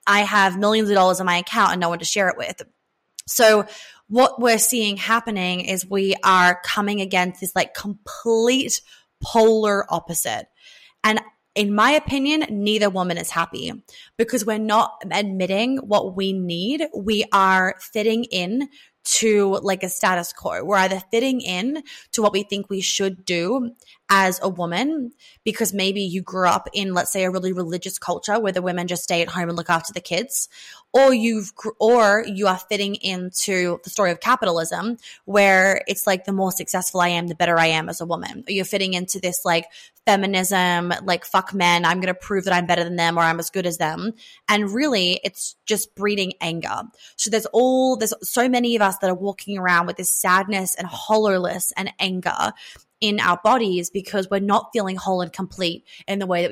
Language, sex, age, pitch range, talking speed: English, female, 20-39, 180-220 Hz, 190 wpm